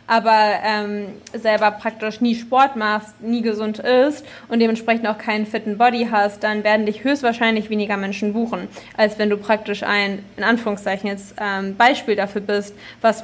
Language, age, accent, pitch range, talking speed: German, 20-39, German, 205-230 Hz, 170 wpm